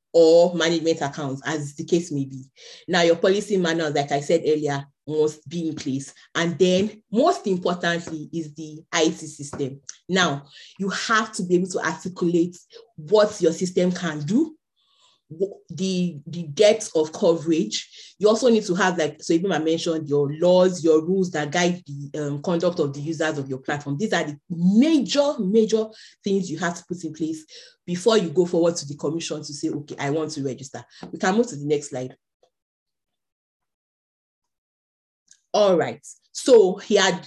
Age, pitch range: 30-49, 150-185 Hz